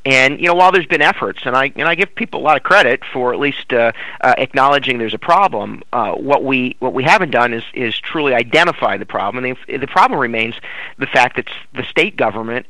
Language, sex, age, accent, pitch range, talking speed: English, male, 40-59, American, 115-140 Hz, 235 wpm